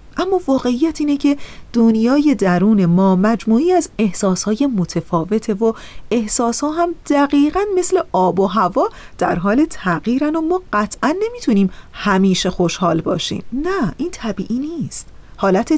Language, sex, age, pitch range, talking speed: Persian, female, 40-59, 195-280 Hz, 130 wpm